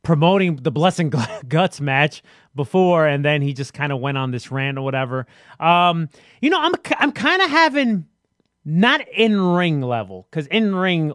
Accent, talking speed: American, 165 wpm